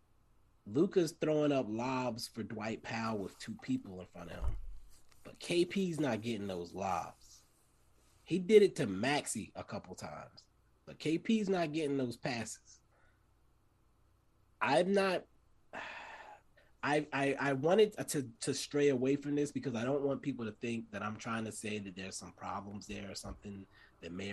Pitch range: 105-150 Hz